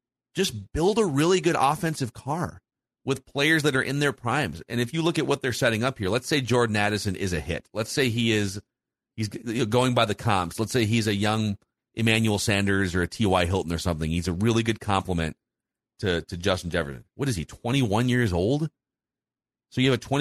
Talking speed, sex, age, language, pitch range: 215 wpm, male, 40-59, English, 100-135 Hz